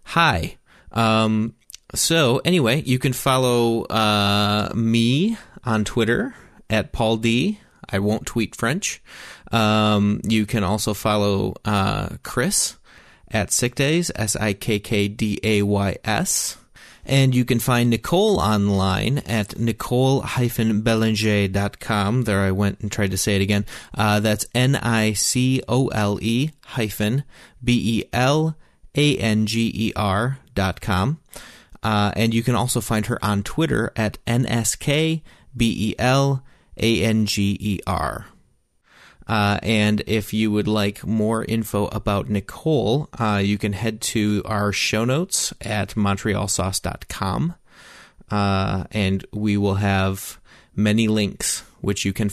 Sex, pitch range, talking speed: male, 100-120 Hz, 110 wpm